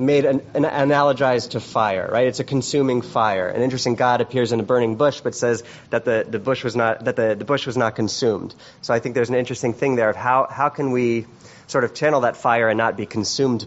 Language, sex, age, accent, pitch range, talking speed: English, male, 30-49, American, 110-130 Hz, 245 wpm